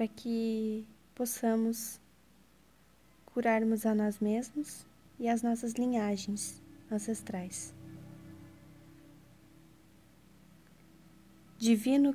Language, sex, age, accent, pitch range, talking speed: Portuguese, female, 20-39, Brazilian, 175-225 Hz, 65 wpm